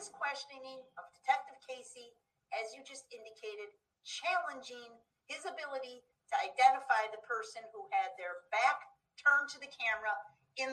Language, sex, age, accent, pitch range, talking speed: English, female, 50-69, American, 225-370 Hz, 135 wpm